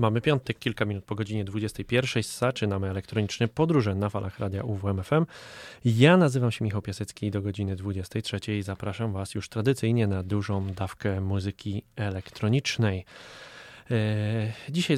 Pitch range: 100-120 Hz